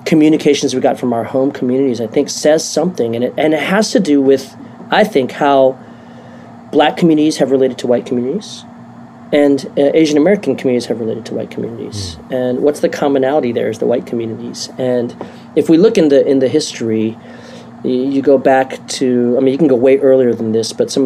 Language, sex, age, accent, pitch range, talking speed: English, male, 40-59, American, 125-150 Hz, 210 wpm